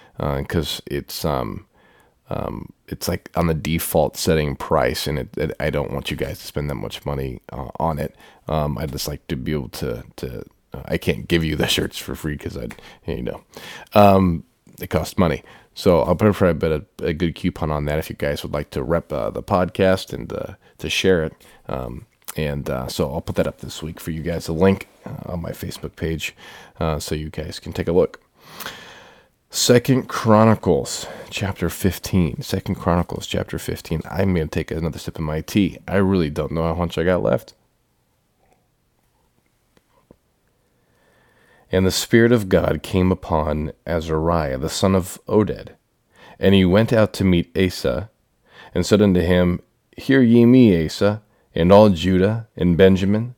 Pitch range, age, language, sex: 80-100 Hz, 30-49, English, male